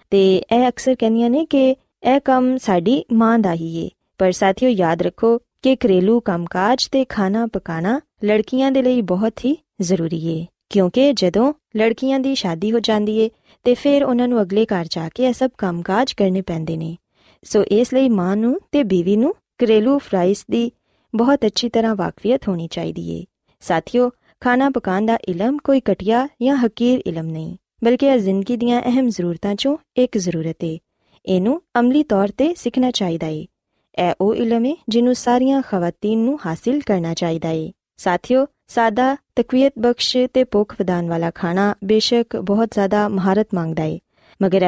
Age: 20-39